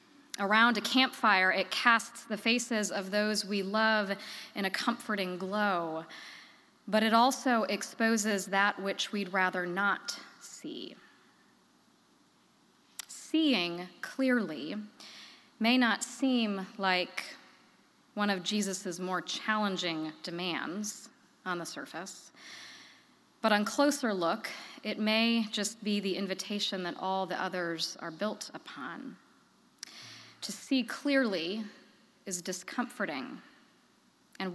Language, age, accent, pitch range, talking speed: English, 20-39, American, 190-235 Hz, 110 wpm